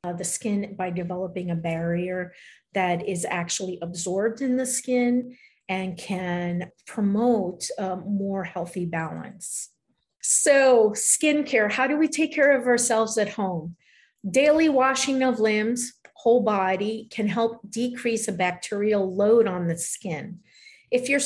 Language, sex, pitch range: English, female, 185-250 Hz